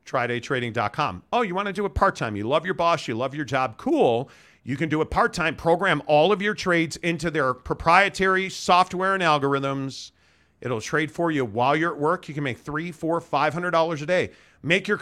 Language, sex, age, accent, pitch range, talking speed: English, male, 40-59, American, 140-185 Hz, 205 wpm